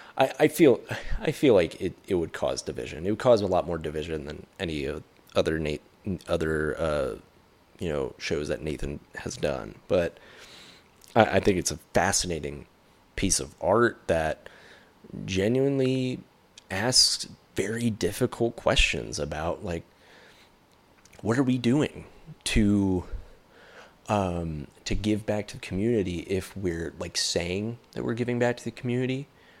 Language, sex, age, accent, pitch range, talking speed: English, male, 30-49, American, 85-105 Hz, 145 wpm